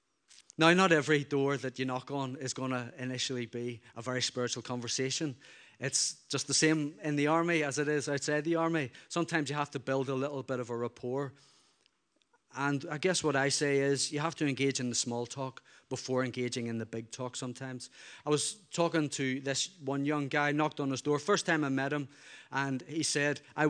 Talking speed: 215 wpm